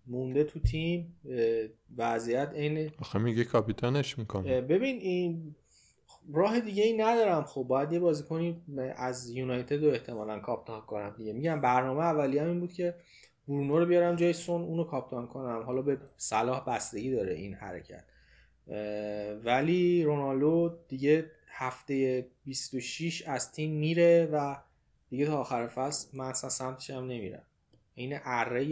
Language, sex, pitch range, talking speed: Persian, male, 120-150 Hz, 130 wpm